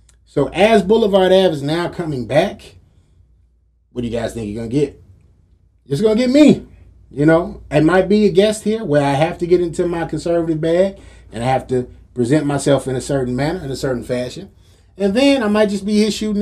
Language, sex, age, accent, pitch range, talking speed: English, male, 30-49, American, 120-190 Hz, 225 wpm